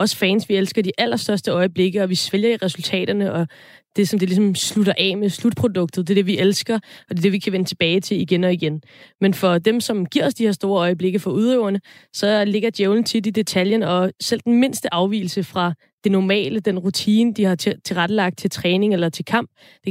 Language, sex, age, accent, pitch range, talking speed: Danish, female, 20-39, native, 180-225 Hz, 225 wpm